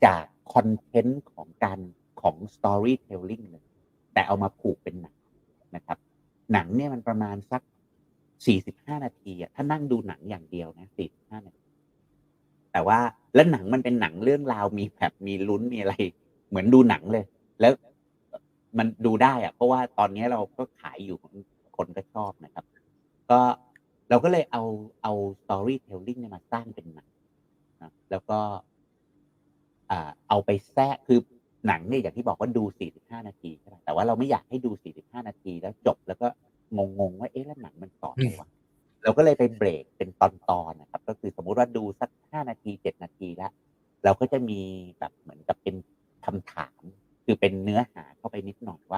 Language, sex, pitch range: Thai, male, 95-120 Hz